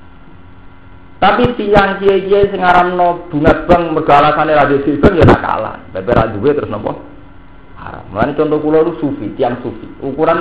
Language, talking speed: Indonesian, 145 wpm